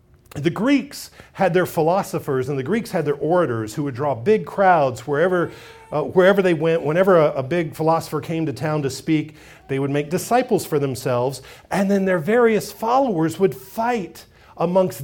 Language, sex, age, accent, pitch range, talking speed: English, male, 40-59, American, 135-185 Hz, 180 wpm